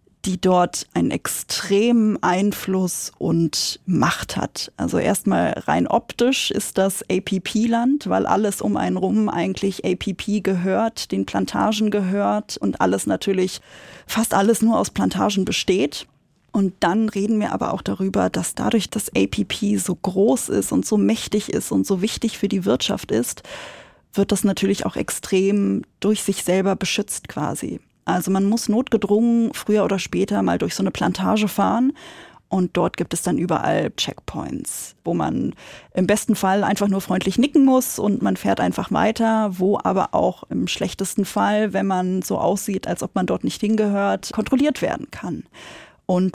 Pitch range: 190-220 Hz